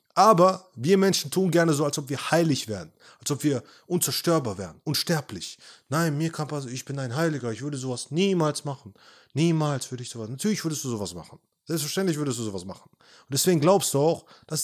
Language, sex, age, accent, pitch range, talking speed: German, male, 30-49, German, 125-170 Hz, 210 wpm